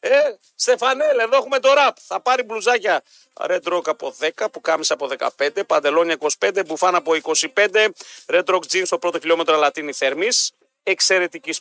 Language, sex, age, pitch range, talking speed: Greek, male, 40-59, 160-215 Hz, 160 wpm